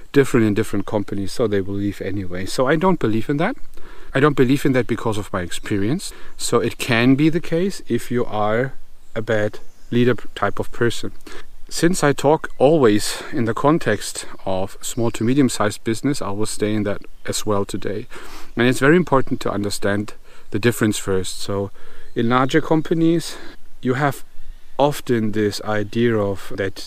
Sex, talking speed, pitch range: male, 175 wpm, 100-120 Hz